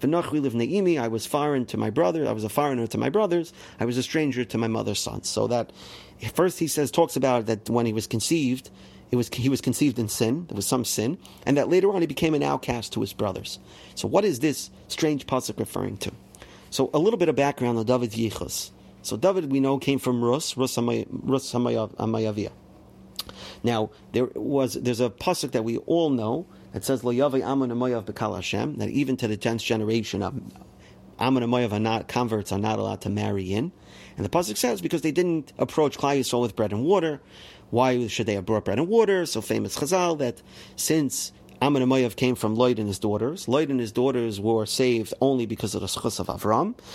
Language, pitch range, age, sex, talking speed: English, 110-140 Hz, 40-59, male, 205 wpm